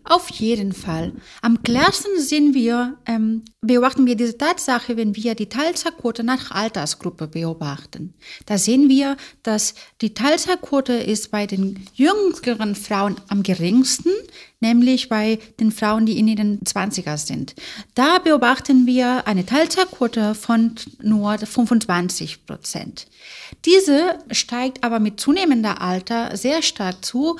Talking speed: 130 wpm